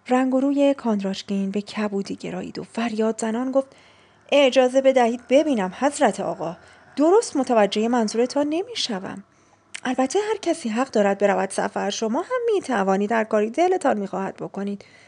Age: 30-49